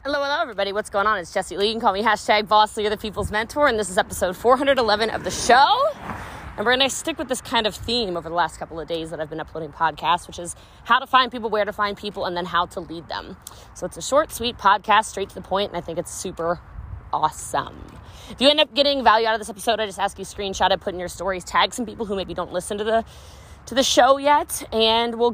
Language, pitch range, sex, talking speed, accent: English, 190-245 Hz, female, 275 wpm, American